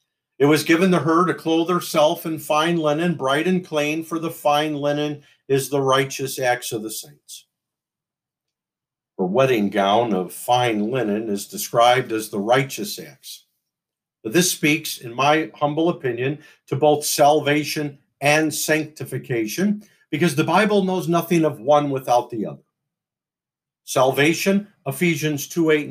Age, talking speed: 50-69, 145 wpm